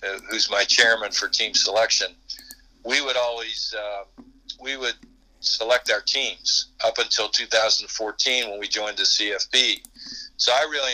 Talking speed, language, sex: 150 wpm, English, male